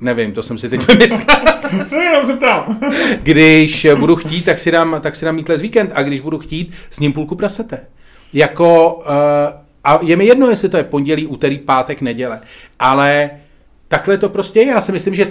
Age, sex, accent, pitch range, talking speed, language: 40-59, male, native, 120-165 Hz, 205 wpm, Czech